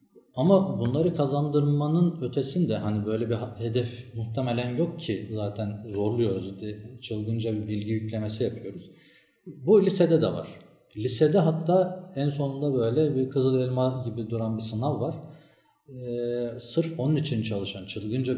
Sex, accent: male, native